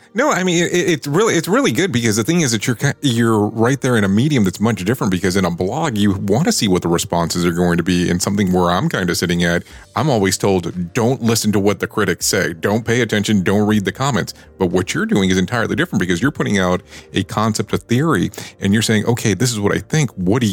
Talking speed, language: 260 wpm, English